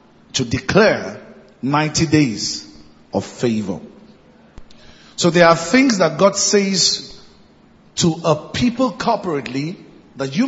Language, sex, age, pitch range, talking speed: English, male, 50-69, 155-220 Hz, 110 wpm